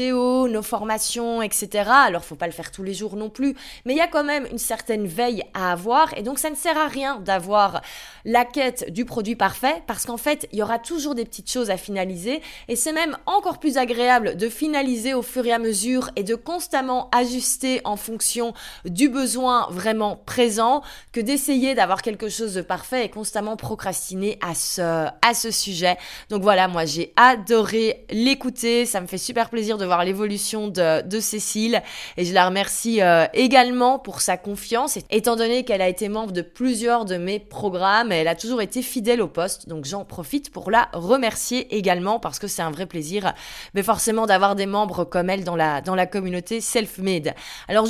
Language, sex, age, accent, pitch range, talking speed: French, female, 20-39, French, 195-250 Hz, 200 wpm